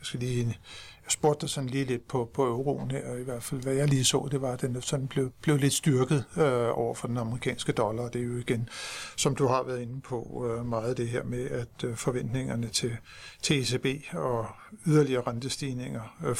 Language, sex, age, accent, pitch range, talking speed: Danish, male, 60-79, native, 125-145 Hz, 225 wpm